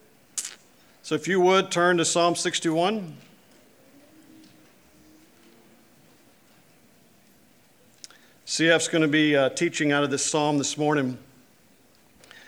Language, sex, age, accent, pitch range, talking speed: English, male, 50-69, American, 145-185 Hz, 100 wpm